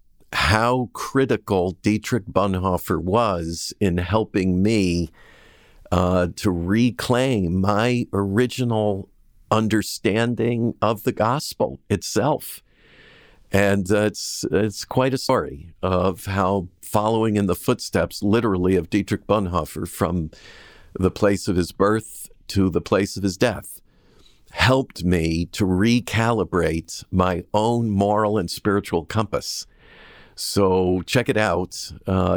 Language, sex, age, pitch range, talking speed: English, male, 50-69, 90-110 Hz, 115 wpm